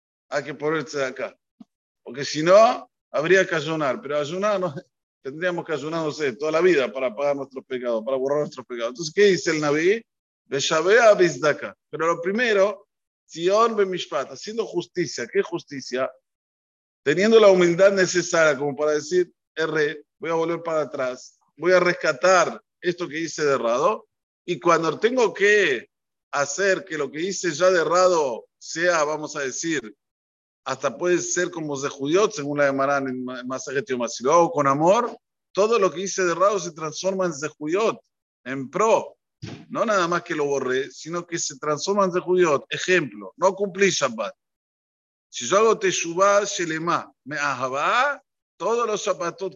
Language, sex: Spanish, male